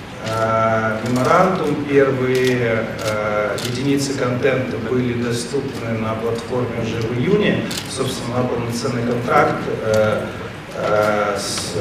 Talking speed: 85 wpm